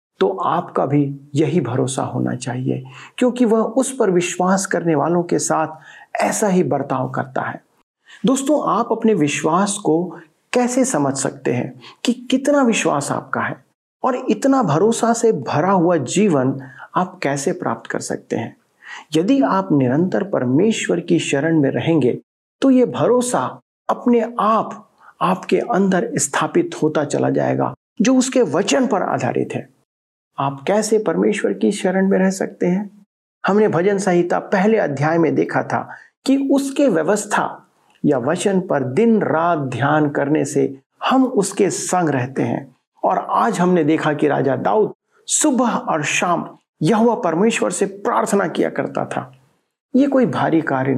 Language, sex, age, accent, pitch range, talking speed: Hindi, male, 50-69, native, 150-230 Hz, 150 wpm